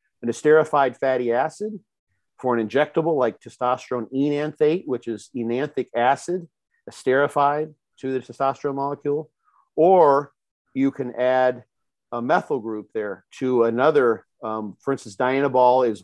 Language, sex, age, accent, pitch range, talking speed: English, male, 50-69, American, 115-150 Hz, 125 wpm